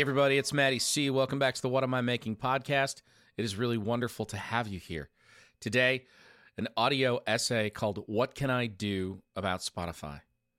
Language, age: English, 40-59